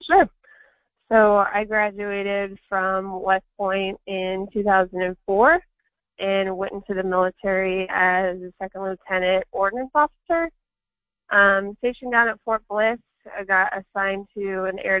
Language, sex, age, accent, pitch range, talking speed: English, female, 20-39, American, 185-205 Hz, 130 wpm